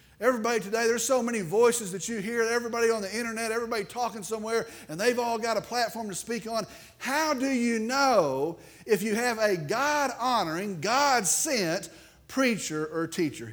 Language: English